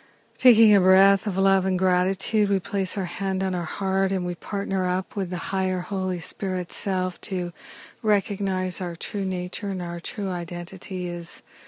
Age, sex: 50-69, female